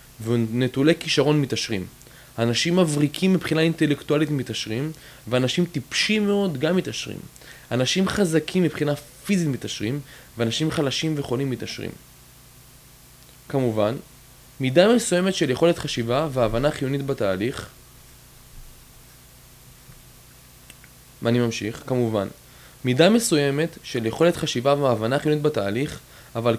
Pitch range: 120-155 Hz